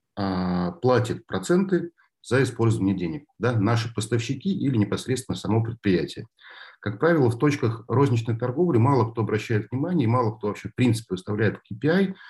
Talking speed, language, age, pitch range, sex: 145 wpm, Russian, 50-69, 105-130 Hz, male